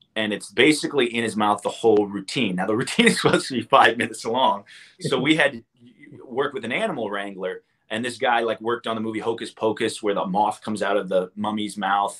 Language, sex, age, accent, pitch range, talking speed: English, male, 30-49, American, 105-120 Hz, 230 wpm